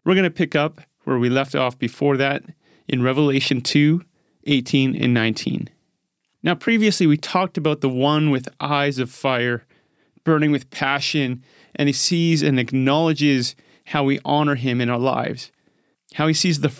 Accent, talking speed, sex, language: American, 170 wpm, male, English